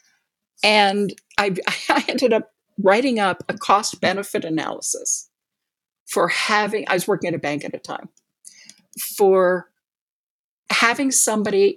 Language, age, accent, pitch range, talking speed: English, 50-69, American, 185-235 Hz, 125 wpm